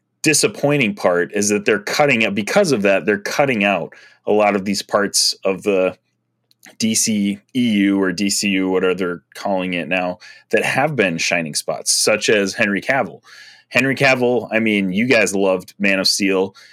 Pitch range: 100-125 Hz